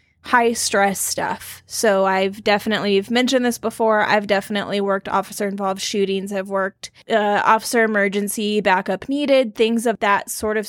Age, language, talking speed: 10-29, English, 150 wpm